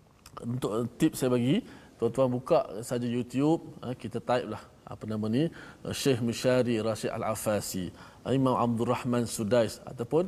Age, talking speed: 20-39, 135 wpm